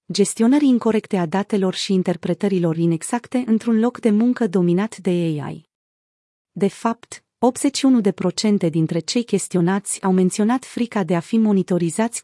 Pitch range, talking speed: 175-225 Hz, 130 wpm